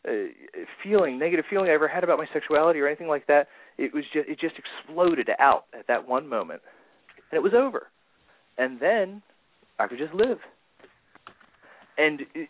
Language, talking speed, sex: English, 170 wpm, male